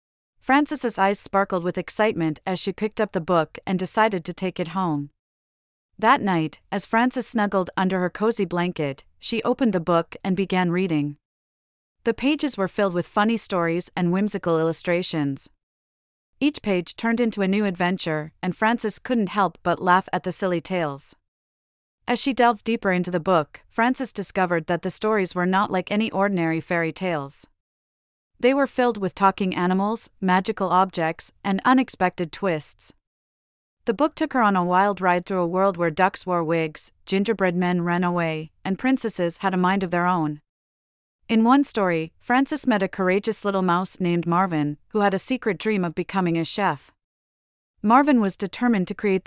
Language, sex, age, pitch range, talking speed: English, female, 30-49, 165-210 Hz, 175 wpm